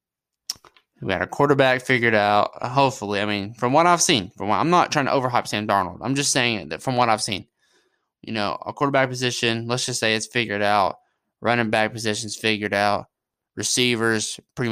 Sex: male